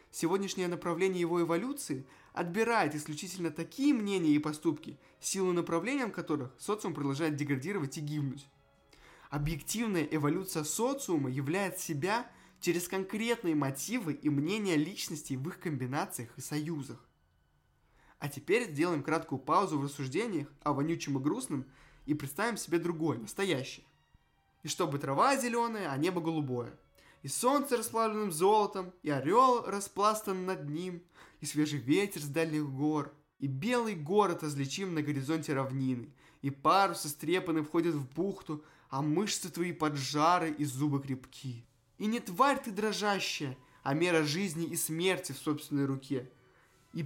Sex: male